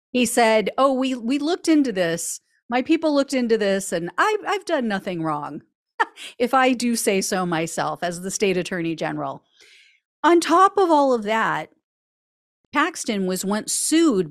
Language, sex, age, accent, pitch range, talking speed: English, female, 40-59, American, 190-290 Hz, 165 wpm